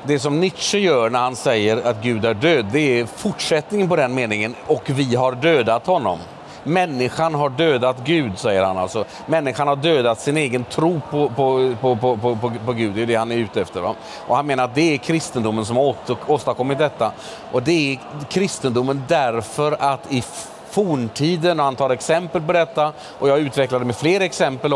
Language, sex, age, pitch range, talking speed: Swedish, male, 40-59, 125-160 Hz, 200 wpm